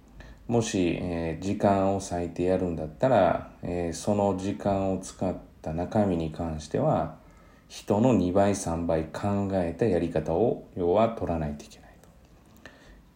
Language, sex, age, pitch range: Japanese, male, 40-59, 80-115 Hz